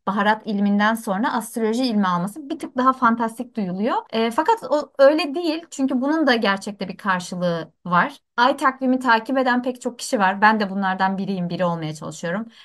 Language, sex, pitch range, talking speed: Turkish, female, 205-280 Hz, 180 wpm